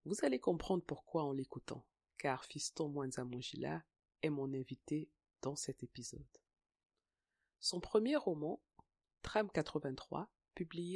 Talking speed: 115 wpm